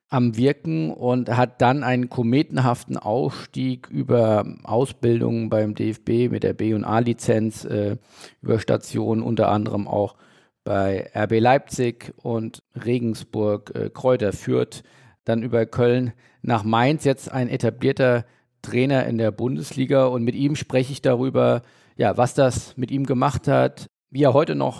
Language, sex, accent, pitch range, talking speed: German, male, German, 115-130 Hz, 145 wpm